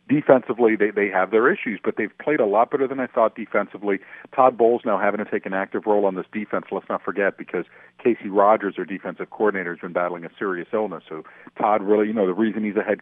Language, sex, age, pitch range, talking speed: English, male, 50-69, 100-130 Hz, 245 wpm